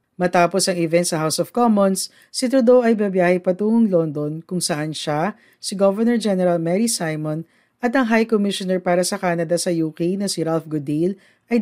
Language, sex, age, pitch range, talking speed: Filipino, female, 40-59, 160-205 Hz, 180 wpm